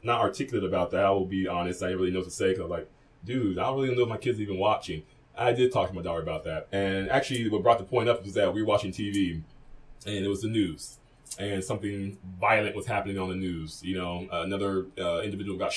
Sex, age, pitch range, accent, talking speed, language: male, 20-39, 100-140 Hz, American, 265 wpm, English